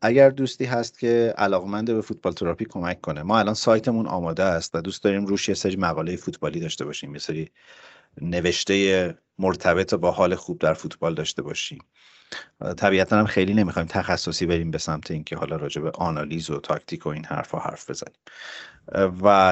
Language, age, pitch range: Persian, 40-59, 80-100 Hz